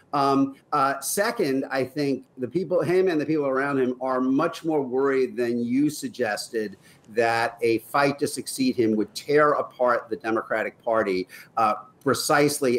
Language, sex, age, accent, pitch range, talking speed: English, male, 50-69, American, 125-160 Hz, 160 wpm